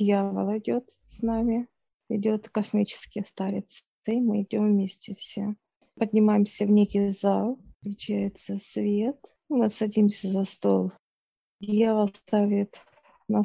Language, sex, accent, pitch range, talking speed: Russian, female, native, 200-215 Hz, 110 wpm